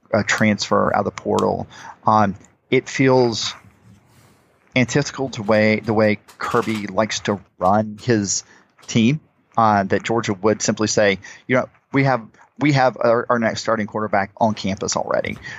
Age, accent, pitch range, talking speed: 40-59, American, 100-115 Hz, 155 wpm